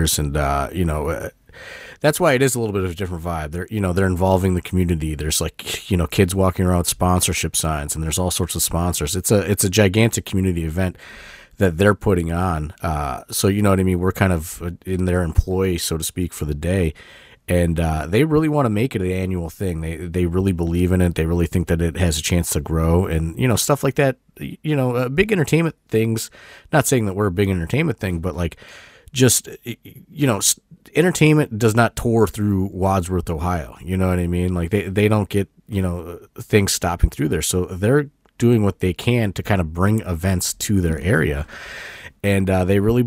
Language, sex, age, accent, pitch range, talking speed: English, male, 30-49, American, 85-105 Hz, 225 wpm